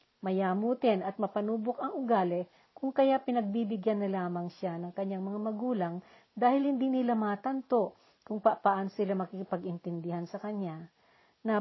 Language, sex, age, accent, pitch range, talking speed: Filipino, female, 50-69, native, 185-235 Hz, 140 wpm